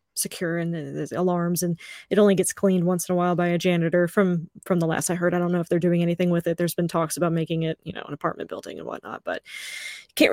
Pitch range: 170-190 Hz